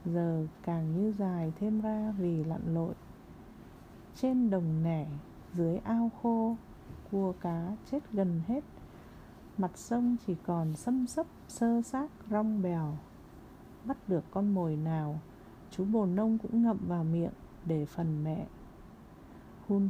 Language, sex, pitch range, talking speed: Vietnamese, female, 170-220 Hz, 140 wpm